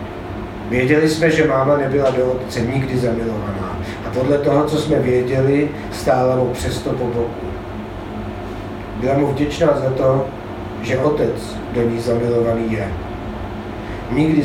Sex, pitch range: male, 110-130 Hz